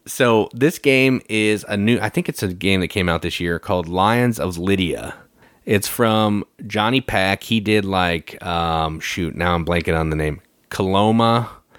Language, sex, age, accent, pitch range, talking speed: English, male, 30-49, American, 85-110 Hz, 185 wpm